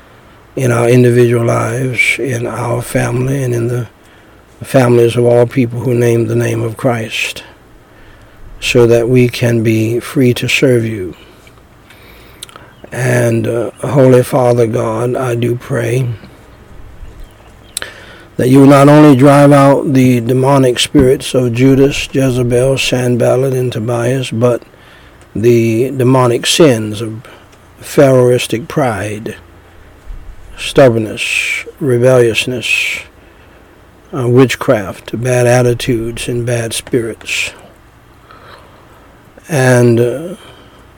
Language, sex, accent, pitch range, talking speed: English, male, American, 115-130 Hz, 100 wpm